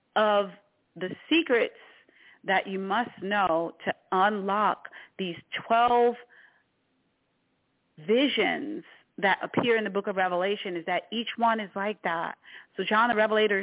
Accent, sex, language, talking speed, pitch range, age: American, female, English, 130 wpm, 180-225 Hz, 40-59